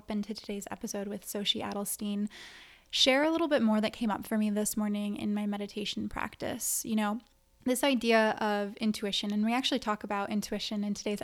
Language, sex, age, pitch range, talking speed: English, female, 20-39, 205-230 Hz, 190 wpm